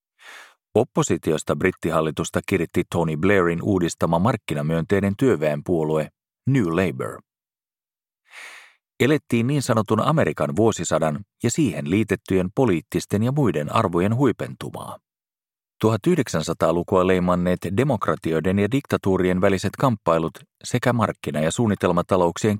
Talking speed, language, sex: 90 wpm, Finnish, male